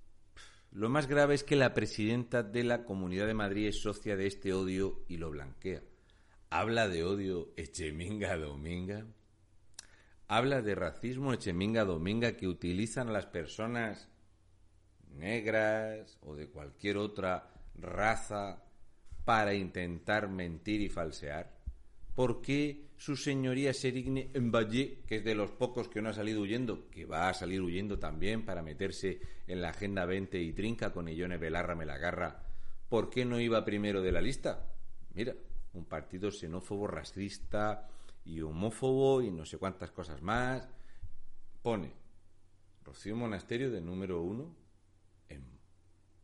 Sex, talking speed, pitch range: male, 145 wpm, 90-110 Hz